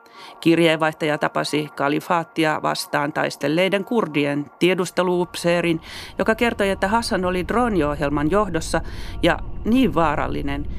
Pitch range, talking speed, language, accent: 115-180 Hz, 95 wpm, Finnish, native